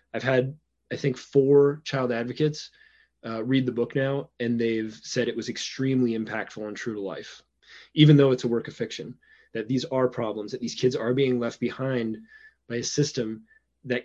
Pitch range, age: 120-145 Hz, 20-39